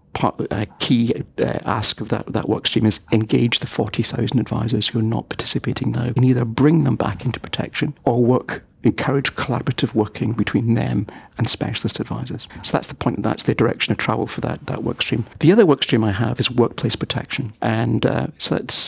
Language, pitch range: English, 115-140 Hz